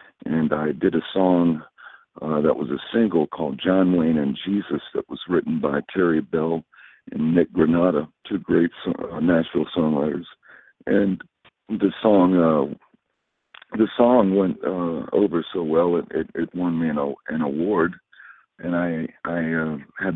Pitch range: 80-95 Hz